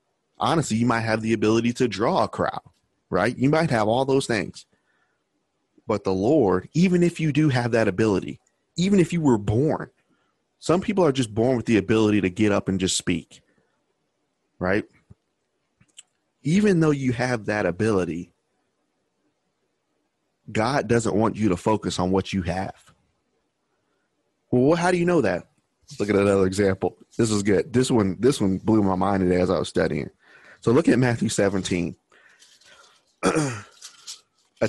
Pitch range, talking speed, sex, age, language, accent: 95-125 Hz, 165 wpm, male, 30-49, English, American